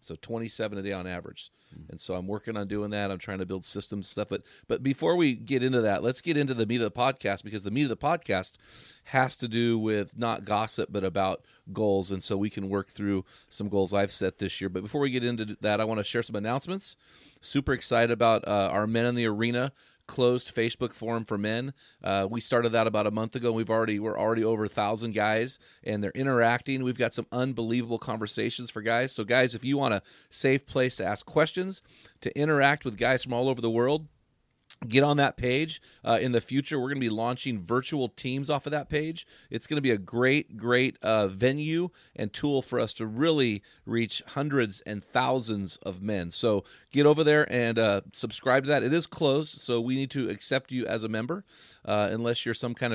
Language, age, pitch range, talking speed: English, 30-49, 105-130 Hz, 225 wpm